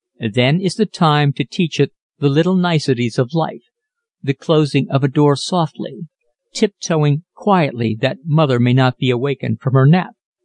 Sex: male